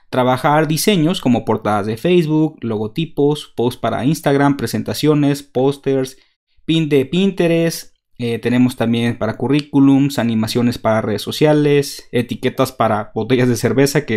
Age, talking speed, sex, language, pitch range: 30-49, 125 wpm, male, Spanish, 120-160 Hz